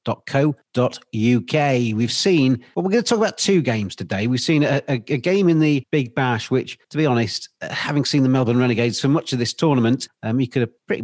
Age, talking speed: 40-59, 235 wpm